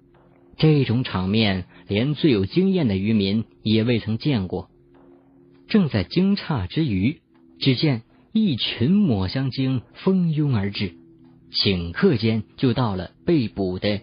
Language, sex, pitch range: Chinese, male, 90-140 Hz